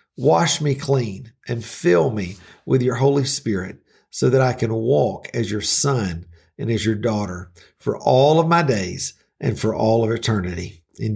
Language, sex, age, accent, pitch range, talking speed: English, male, 50-69, American, 115-150 Hz, 175 wpm